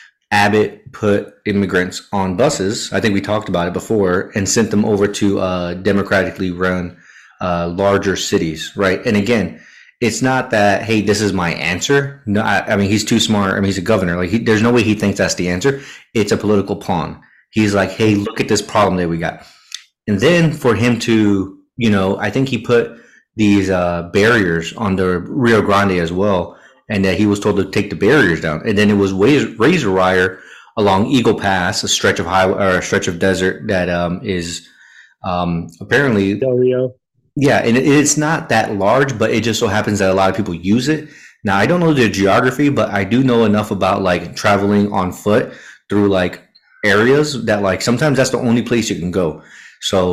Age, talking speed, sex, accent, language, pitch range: 30-49, 210 wpm, male, American, English, 95-120 Hz